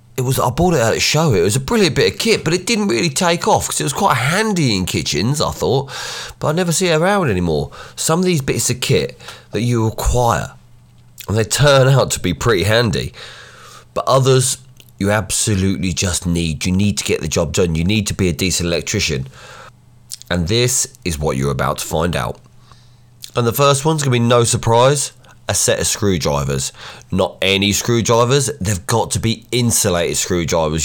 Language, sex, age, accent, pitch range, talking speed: English, male, 30-49, British, 95-130 Hz, 205 wpm